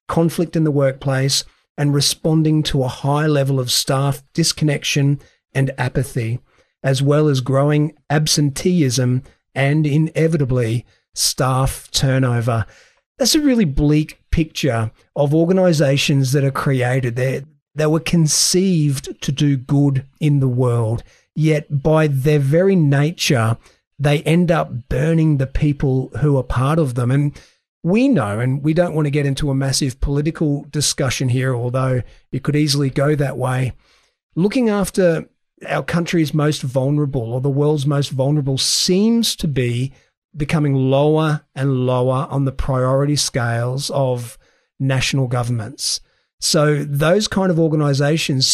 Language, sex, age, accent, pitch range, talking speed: English, male, 40-59, Australian, 130-155 Hz, 135 wpm